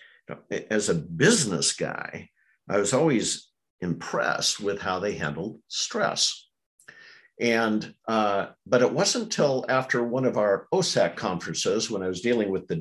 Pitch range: 95-115 Hz